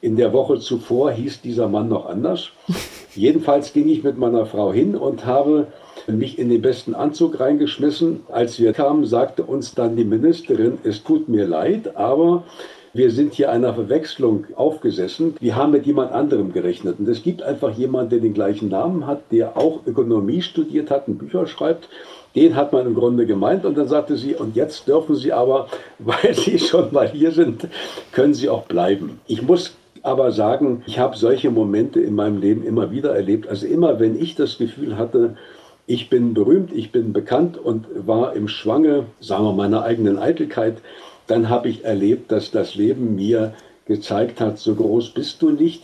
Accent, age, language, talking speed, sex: German, 50-69, German, 185 wpm, male